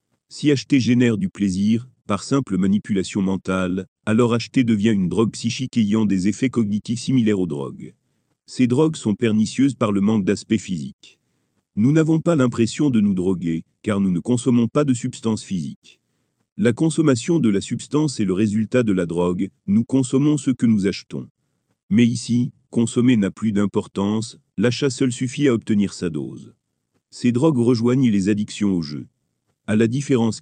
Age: 40-59